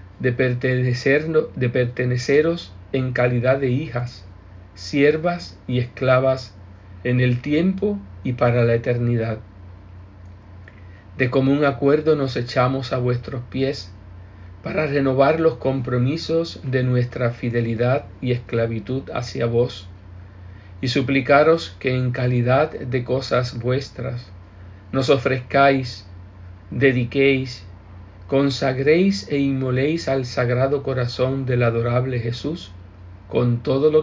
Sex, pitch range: male, 95-135 Hz